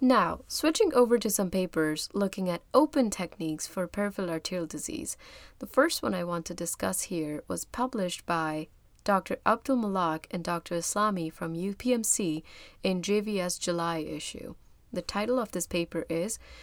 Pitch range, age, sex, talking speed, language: 170-230 Hz, 20-39, female, 150 wpm, English